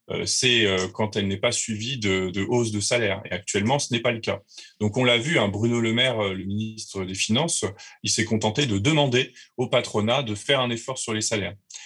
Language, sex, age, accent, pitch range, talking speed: French, male, 20-39, French, 100-125 Hz, 225 wpm